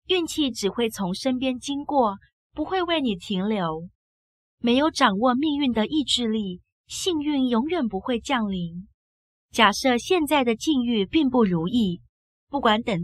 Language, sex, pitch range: Chinese, female, 200-275 Hz